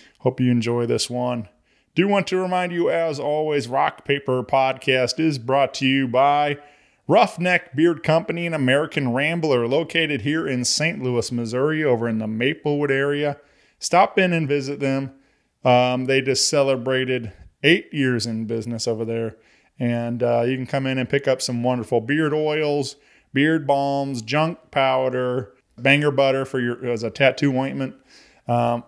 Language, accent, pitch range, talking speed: English, American, 125-150 Hz, 160 wpm